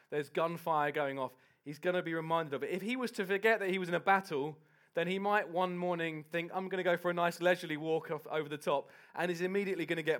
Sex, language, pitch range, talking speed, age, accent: male, English, 170-205 Hz, 270 wpm, 20-39, British